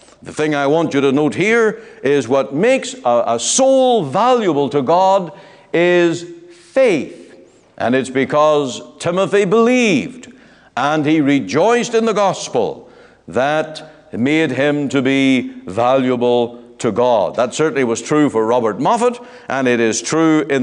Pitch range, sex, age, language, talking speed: 140-205 Hz, male, 60-79, English, 145 wpm